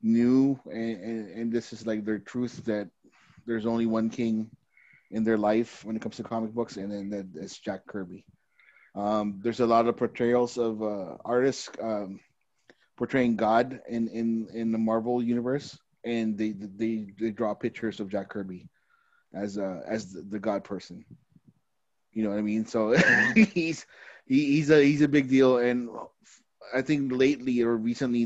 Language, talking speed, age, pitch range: English, 170 wpm, 20-39, 105-120 Hz